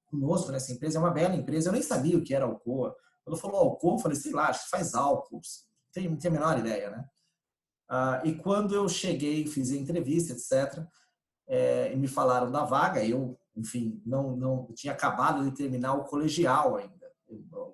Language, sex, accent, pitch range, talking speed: Portuguese, male, Brazilian, 140-185 Hz, 200 wpm